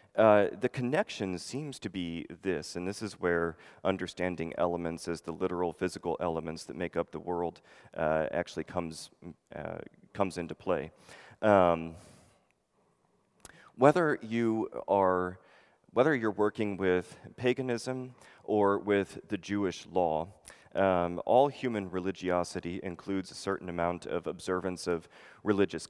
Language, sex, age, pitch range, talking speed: English, male, 30-49, 90-105 Hz, 130 wpm